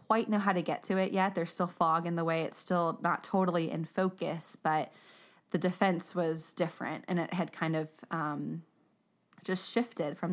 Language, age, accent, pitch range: English, 20-39, American, 165-195 Hz